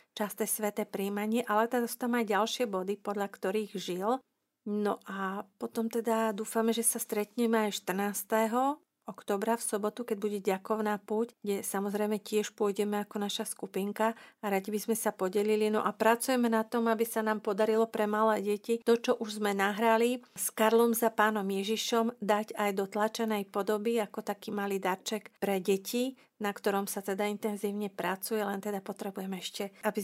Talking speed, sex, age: 170 wpm, female, 40-59